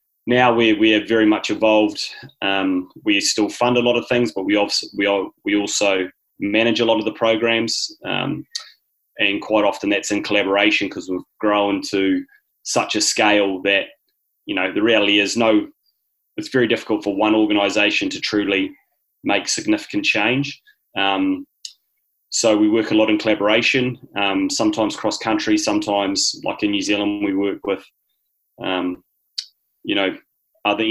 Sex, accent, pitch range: male, Australian, 100-135 Hz